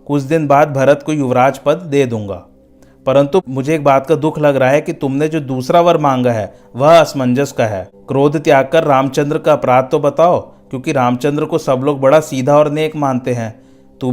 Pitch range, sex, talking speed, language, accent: 130-150 Hz, male, 210 wpm, Hindi, native